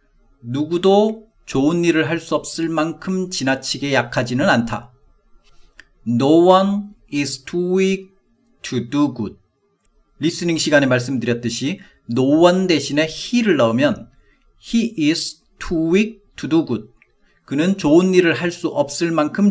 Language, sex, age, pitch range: Korean, male, 40-59, 125-180 Hz